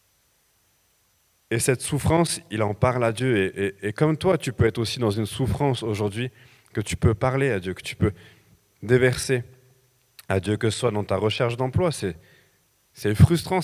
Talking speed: 190 wpm